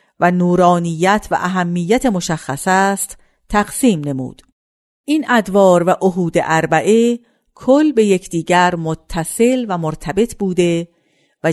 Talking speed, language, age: 110 wpm, Persian, 50-69